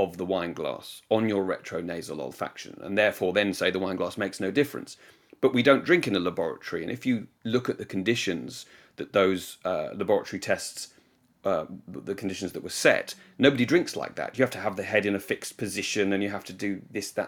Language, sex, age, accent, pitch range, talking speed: English, male, 30-49, British, 95-125 Hz, 220 wpm